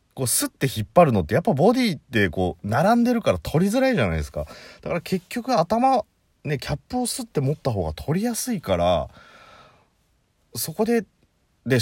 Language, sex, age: Japanese, male, 30-49